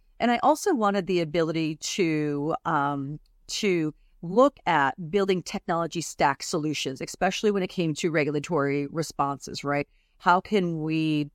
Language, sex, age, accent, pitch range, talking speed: English, female, 40-59, American, 150-190 Hz, 135 wpm